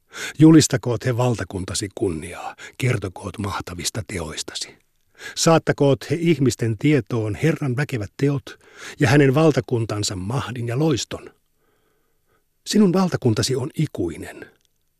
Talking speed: 95 wpm